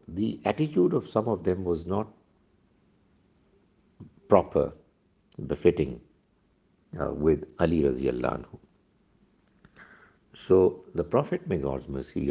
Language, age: Urdu, 60-79